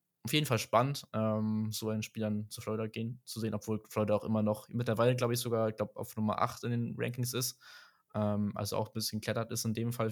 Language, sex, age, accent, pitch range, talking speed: German, male, 20-39, German, 110-125 Hz, 235 wpm